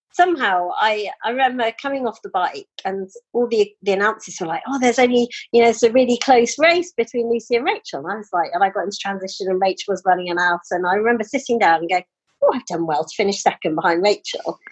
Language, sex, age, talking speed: English, female, 40-59, 245 wpm